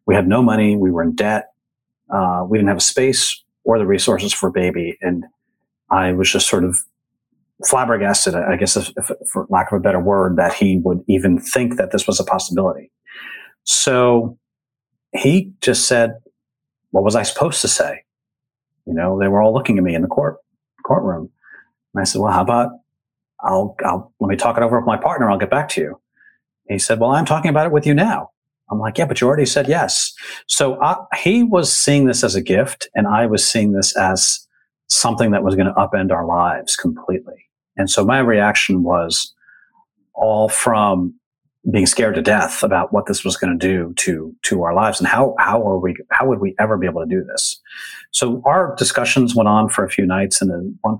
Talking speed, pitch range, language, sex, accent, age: 210 wpm, 95-125 Hz, English, male, American, 40-59